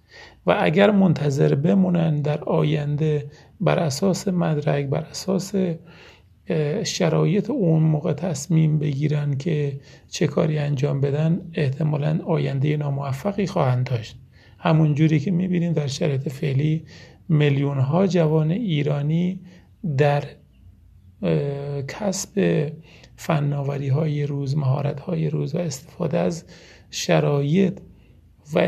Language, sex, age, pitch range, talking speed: Persian, male, 40-59, 145-170 Hz, 100 wpm